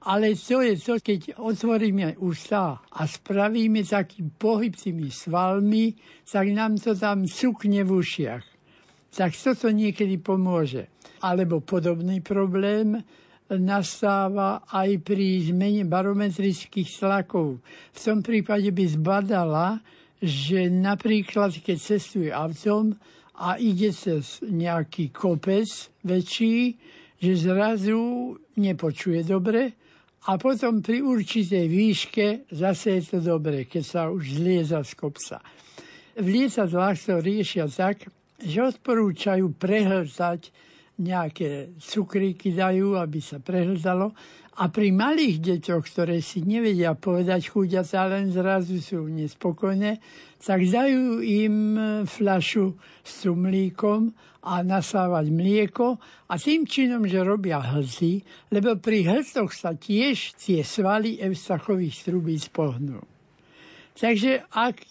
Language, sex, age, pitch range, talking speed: Slovak, male, 60-79, 175-215 Hz, 115 wpm